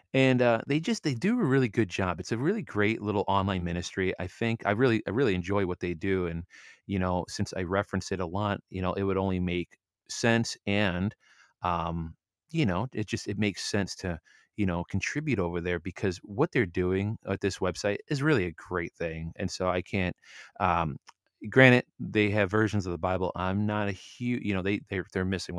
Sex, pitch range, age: male, 90-105 Hz, 30-49